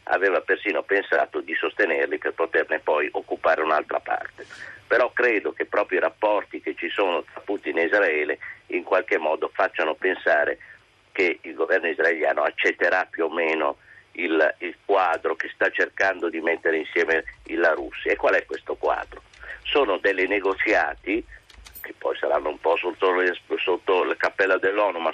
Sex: male